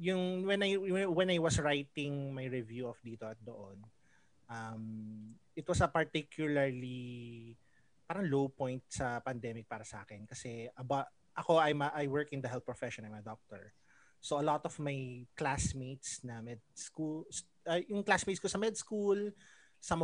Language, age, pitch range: English, 30-49, 125-170 Hz